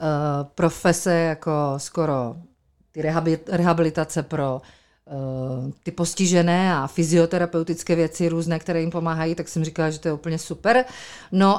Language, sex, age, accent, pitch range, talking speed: Czech, female, 40-59, native, 165-190 Hz, 130 wpm